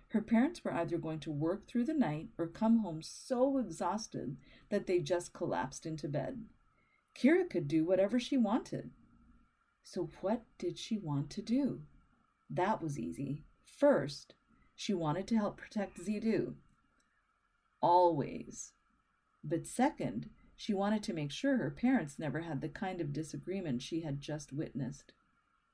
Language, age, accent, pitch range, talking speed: English, 40-59, American, 160-220 Hz, 150 wpm